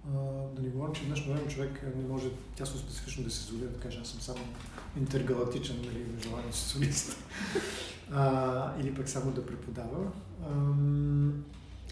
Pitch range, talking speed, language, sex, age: 120-135 Hz, 155 wpm, Bulgarian, male, 40-59